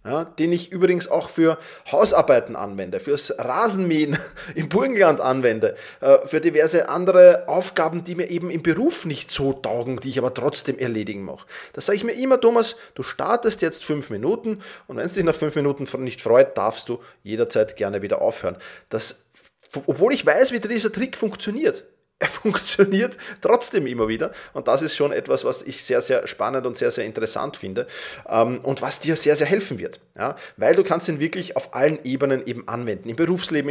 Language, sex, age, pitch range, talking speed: German, male, 30-49, 140-230 Hz, 185 wpm